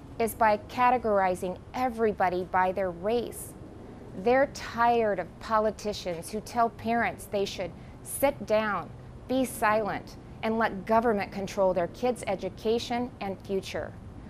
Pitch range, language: 190-235 Hz, English